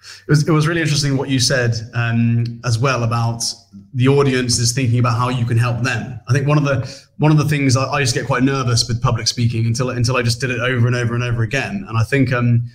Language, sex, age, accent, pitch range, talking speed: English, male, 20-39, British, 120-140 Hz, 265 wpm